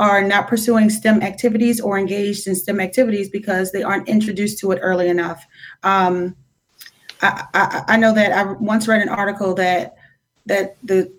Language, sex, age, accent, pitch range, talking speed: English, female, 30-49, American, 195-225 Hz, 170 wpm